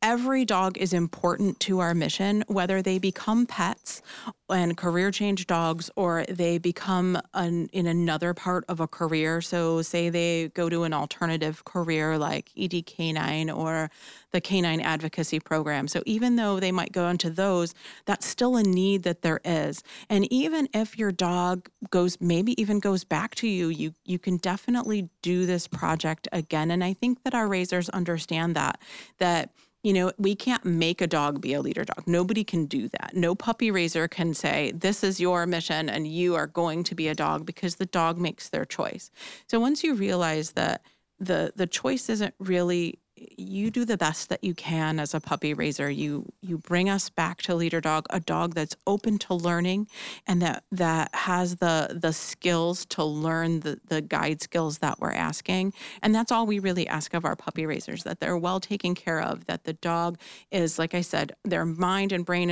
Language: English